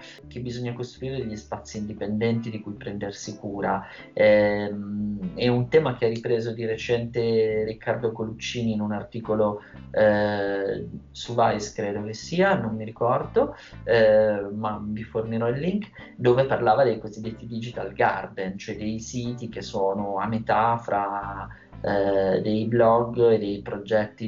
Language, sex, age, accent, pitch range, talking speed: Italian, male, 30-49, native, 105-115 Hz, 145 wpm